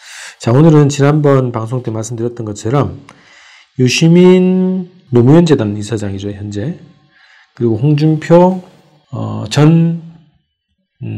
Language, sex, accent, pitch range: Korean, male, native, 110-150 Hz